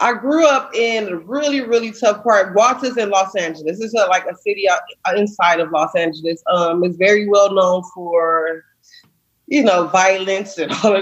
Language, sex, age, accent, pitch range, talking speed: English, female, 20-39, American, 180-235 Hz, 190 wpm